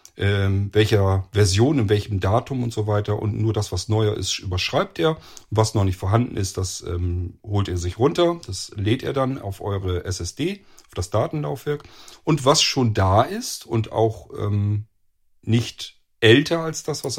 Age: 40-59